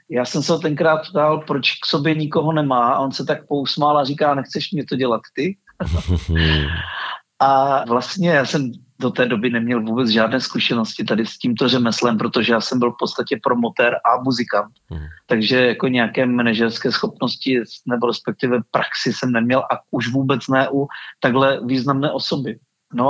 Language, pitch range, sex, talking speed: Czech, 125-150 Hz, male, 170 wpm